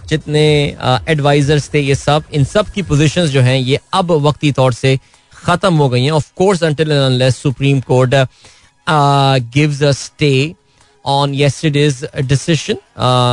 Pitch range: 130-160 Hz